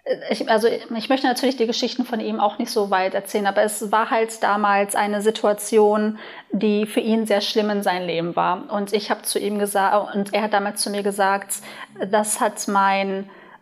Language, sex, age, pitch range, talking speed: German, female, 20-39, 200-230 Hz, 205 wpm